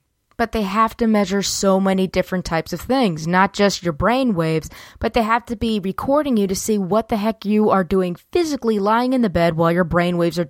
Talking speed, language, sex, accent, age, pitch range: 235 wpm, English, female, American, 20-39, 170-215 Hz